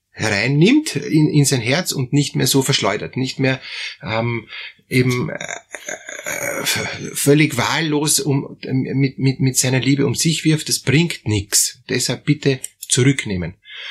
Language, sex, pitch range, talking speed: German, male, 125-145 Hz, 140 wpm